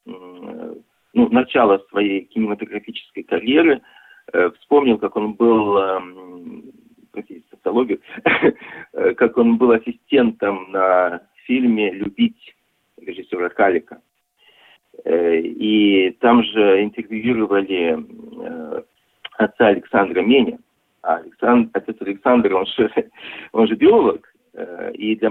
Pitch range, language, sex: 105-160 Hz, Russian, male